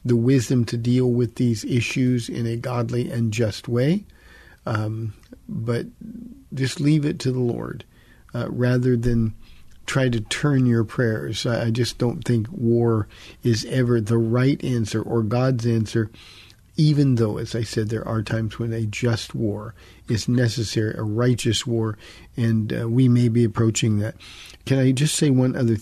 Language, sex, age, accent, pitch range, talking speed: English, male, 50-69, American, 110-130 Hz, 165 wpm